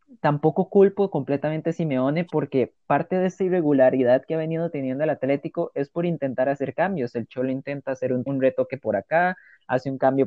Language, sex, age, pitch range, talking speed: Spanish, male, 20-39, 130-160 Hz, 195 wpm